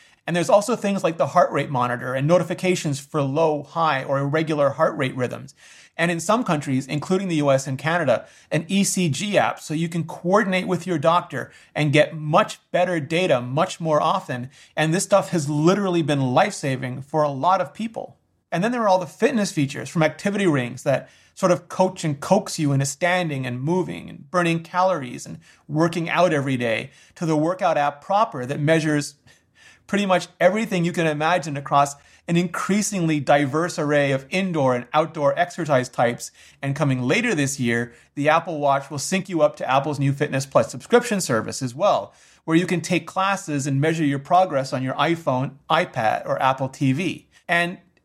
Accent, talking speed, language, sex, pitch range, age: American, 185 wpm, English, male, 140-180 Hz, 30-49